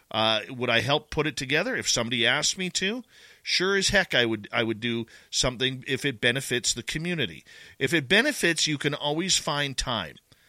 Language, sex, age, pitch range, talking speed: English, male, 40-59, 120-150 Hz, 195 wpm